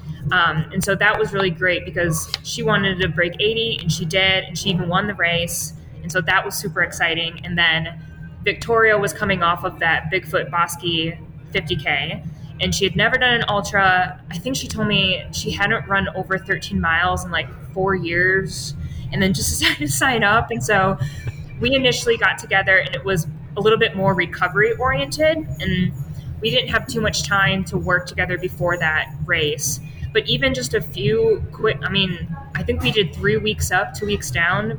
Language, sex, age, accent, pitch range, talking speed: English, female, 10-29, American, 155-195 Hz, 195 wpm